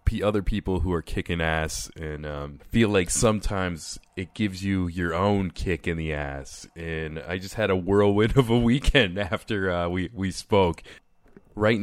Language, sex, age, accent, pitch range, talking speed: English, male, 30-49, American, 80-95 Hz, 180 wpm